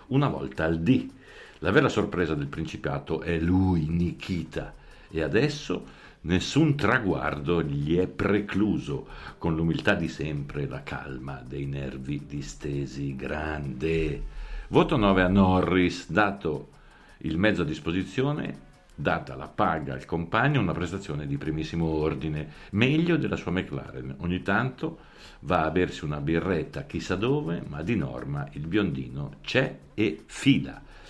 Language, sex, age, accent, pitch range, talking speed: Italian, male, 50-69, native, 75-100 Hz, 135 wpm